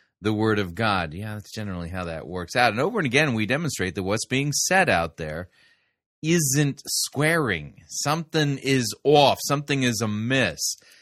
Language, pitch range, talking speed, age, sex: English, 100-140 Hz, 185 wpm, 30-49, male